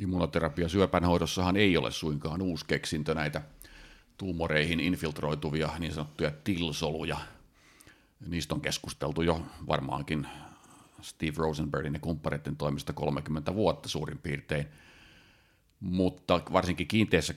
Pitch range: 75-85 Hz